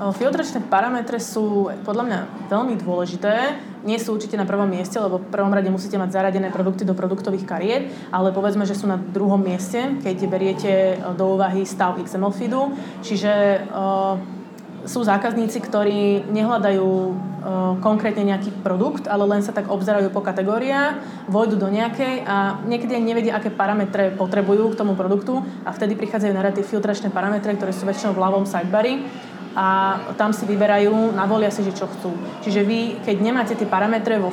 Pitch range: 195-220 Hz